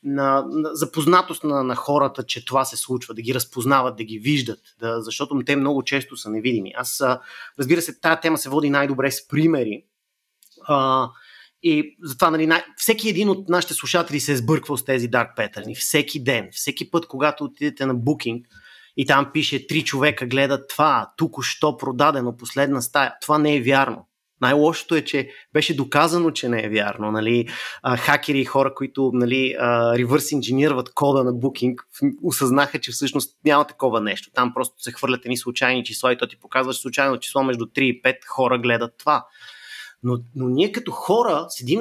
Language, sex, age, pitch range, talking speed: Bulgarian, male, 30-49, 125-155 Hz, 185 wpm